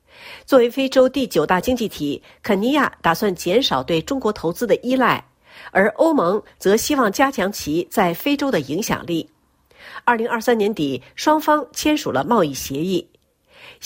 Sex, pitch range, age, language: female, 190-280 Hz, 50-69, Chinese